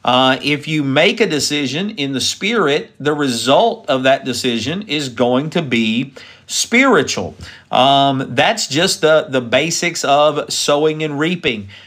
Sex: male